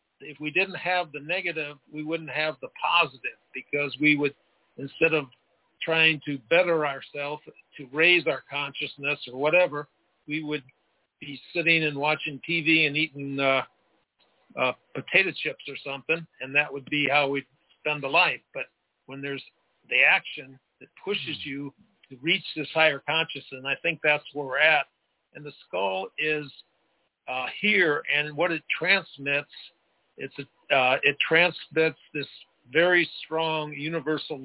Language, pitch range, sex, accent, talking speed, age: English, 140-165 Hz, male, American, 155 wpm, 50-69